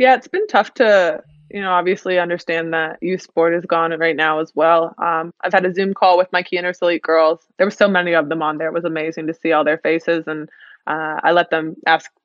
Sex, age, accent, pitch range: female, 20-39, American, 160-185 Hz